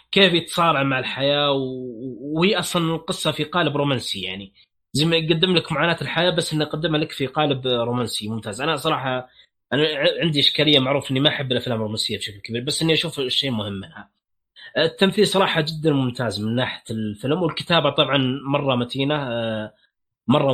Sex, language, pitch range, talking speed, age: male, Arabic, 130-170 Hz, 165 wpm, 20-39